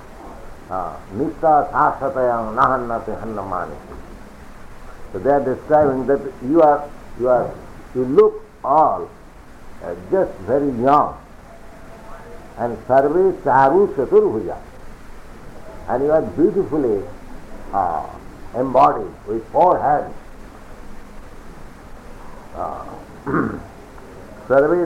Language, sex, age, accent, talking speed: English, male, 60-79, Indian, 75 wpm